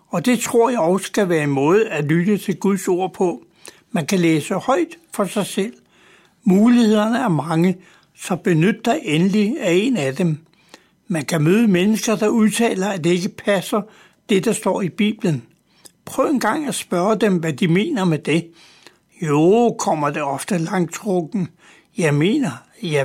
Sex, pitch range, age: male, 170-215 Hz, 60-79